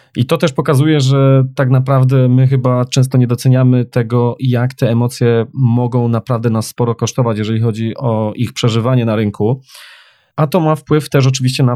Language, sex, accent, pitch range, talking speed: Polish, male, native, 120-140 Hz, 180 wpm